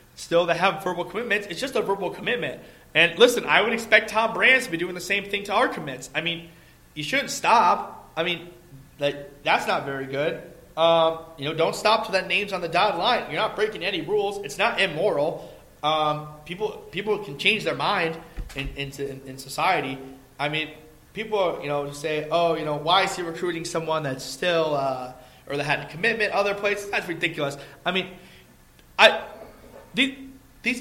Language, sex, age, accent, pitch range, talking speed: English, male, 30-49, American, 145-190 Hz, 195 wpm